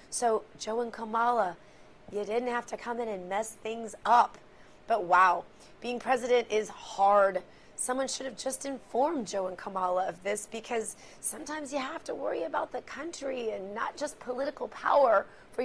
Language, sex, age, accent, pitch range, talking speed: English, female, 30-49, American, 210-260 Hz, 175 wpm